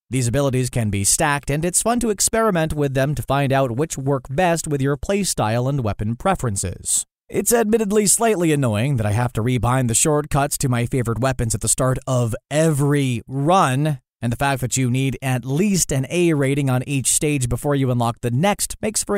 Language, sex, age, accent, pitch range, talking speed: English, male, 30-49, American, 120-155 Hz, 205 wpm